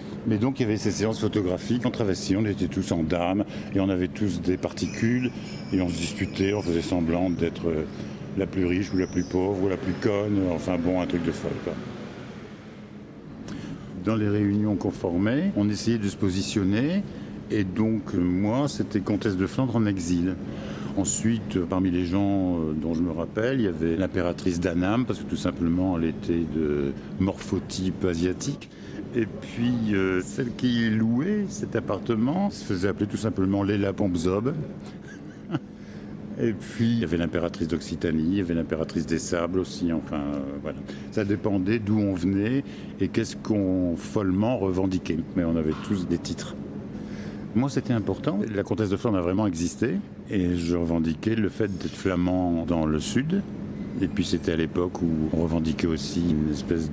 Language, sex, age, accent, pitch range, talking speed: French, male, 60-79, French, 85-105 Hz, 175 wpm